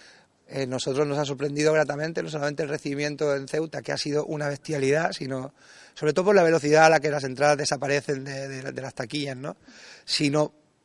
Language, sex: Spanish, male